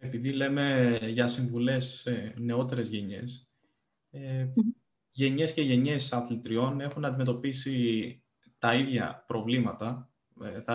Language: Greek